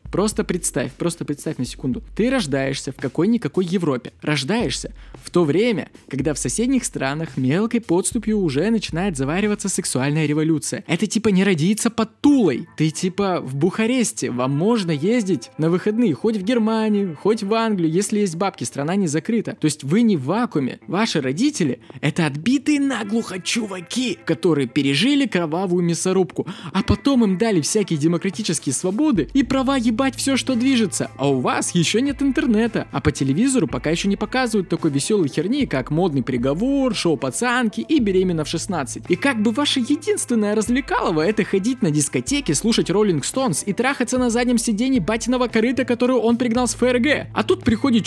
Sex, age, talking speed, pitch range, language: male, 20-39, 165 wpm, 160-240 Hz, Russian